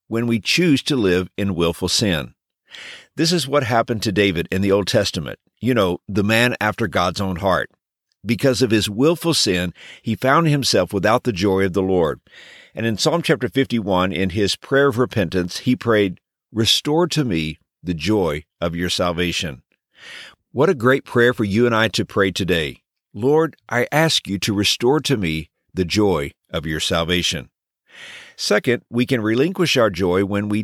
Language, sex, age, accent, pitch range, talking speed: English, male, 50-69, American, 95-130 Hz, 180 wpm